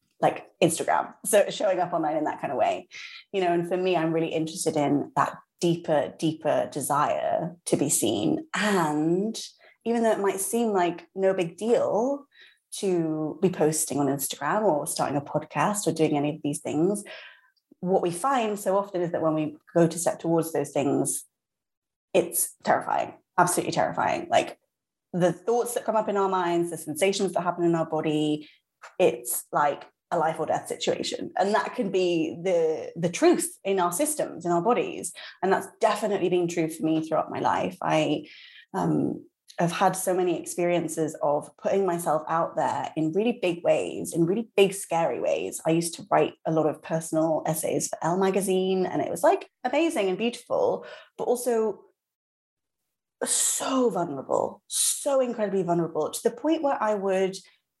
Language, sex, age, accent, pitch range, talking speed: English, female, 20-39, British, 160-220 Hz, 175 wpm